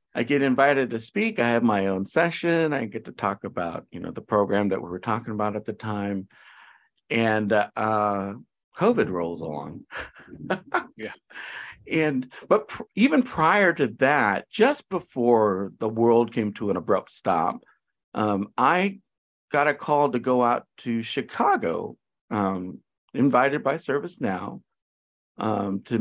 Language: English